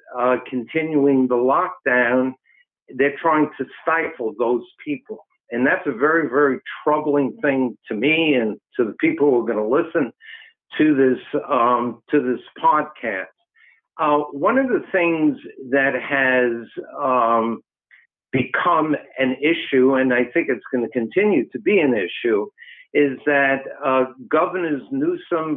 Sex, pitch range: male, 130-170 Hz